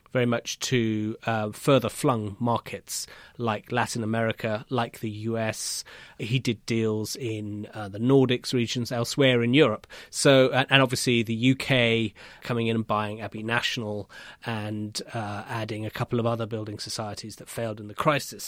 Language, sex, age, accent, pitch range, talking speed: English, male, 30-49, British, 115-135 Hz, 165 wpm